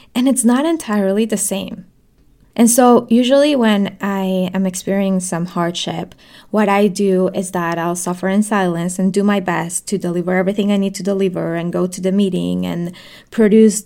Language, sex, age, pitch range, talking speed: English, female, 10-29, 180-215 Hz, 180 wpm